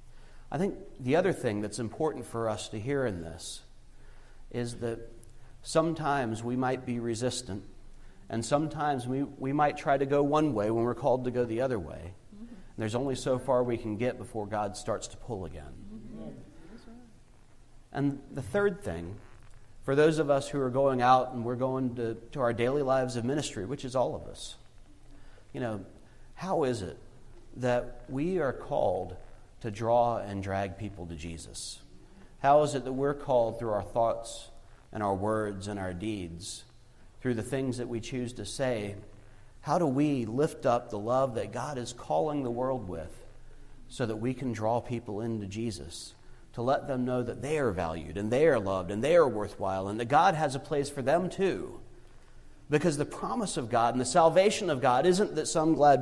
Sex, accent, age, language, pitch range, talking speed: male, American, 40-59, English, 110-140 Hz, 190 wpm